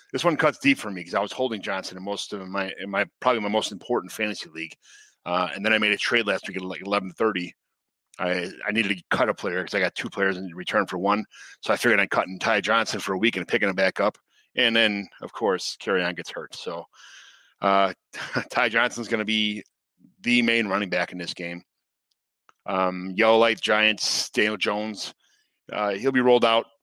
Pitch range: 95-115 Hz